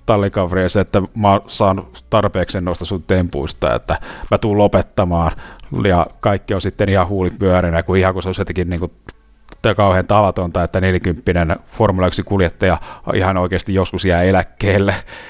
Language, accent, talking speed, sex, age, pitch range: Finnish, native, 150 wpm, male, 30-49, 90-105 Hz